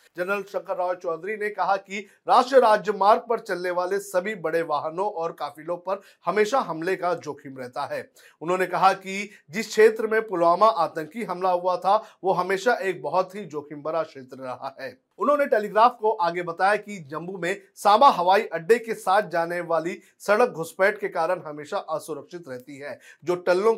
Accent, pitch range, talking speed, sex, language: native, 170-210 Hz, 170 wpm, male, Hindi